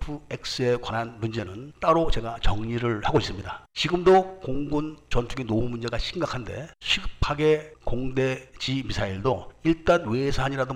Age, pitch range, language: 50-69, 115-155 Hz, Korean